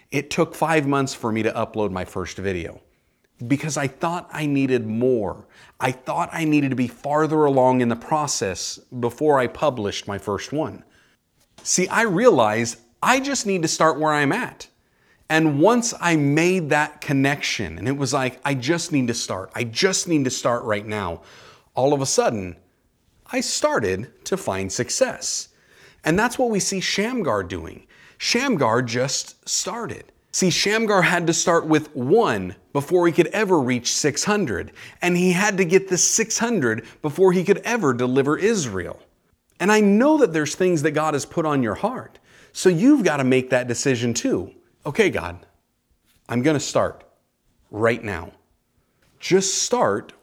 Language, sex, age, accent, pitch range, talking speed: English, male, 30-49, American, 120-175 Hz, 170 wpm